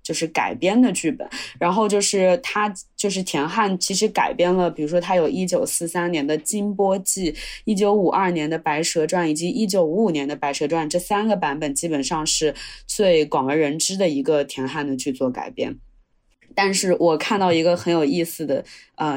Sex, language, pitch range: female, Chinese, 160-215 Hz